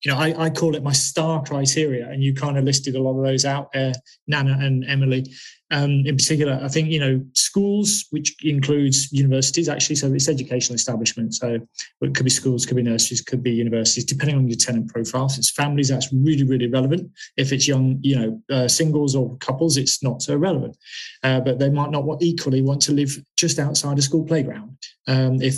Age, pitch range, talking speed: 20-39, 130-145 Hz, 210 wpm